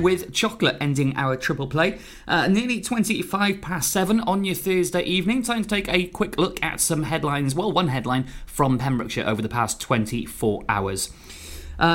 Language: English